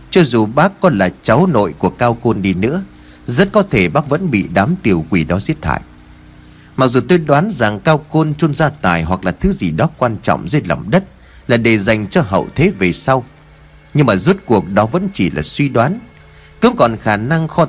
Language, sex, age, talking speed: Vietnamese, male, 30-49, 225 wpm